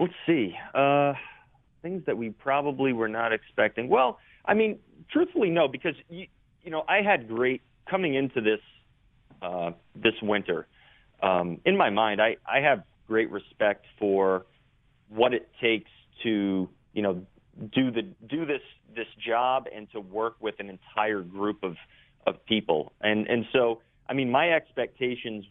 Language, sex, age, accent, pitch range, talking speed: English, male, 30-49, American, 100-125 Hz, 160 wpm